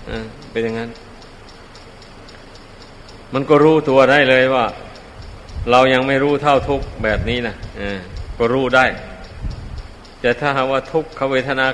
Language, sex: Thai, male